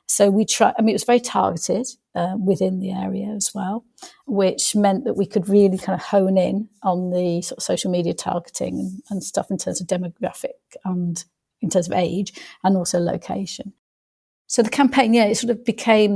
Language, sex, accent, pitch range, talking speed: English, female, British, 185-220 Hz, 200 wpm